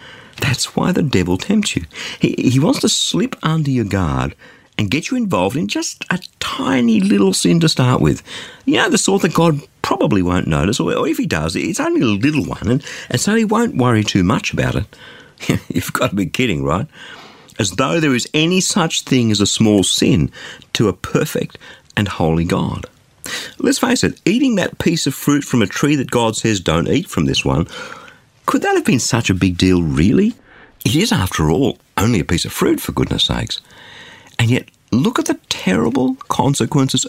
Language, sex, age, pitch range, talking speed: English, male, 50-69, 100-165 Hz, 205 wpm